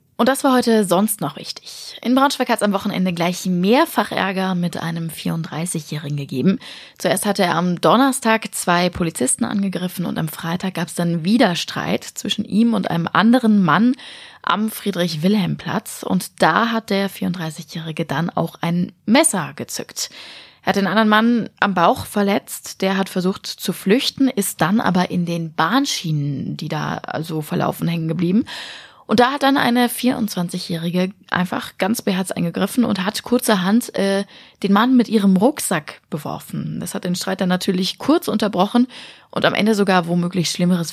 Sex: female